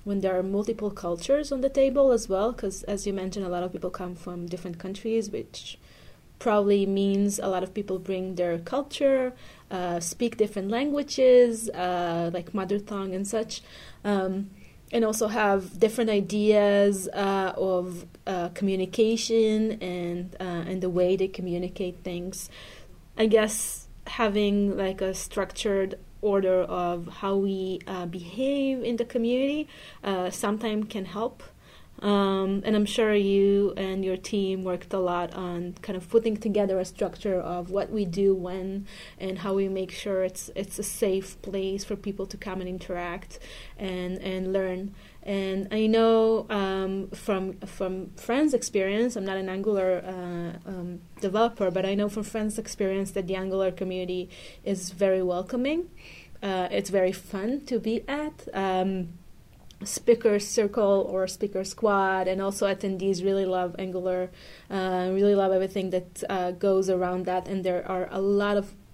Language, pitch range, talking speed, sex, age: Hebrew, 185-210 Hz, 160 wpm, female, 20-39